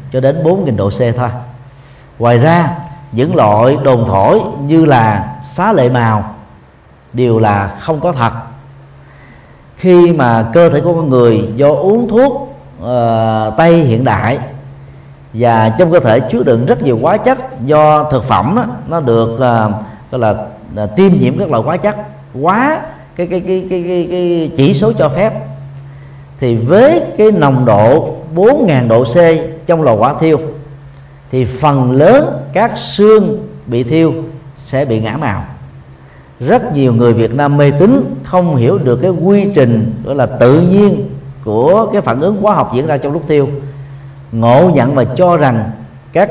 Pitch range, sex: 120-170 Hz, male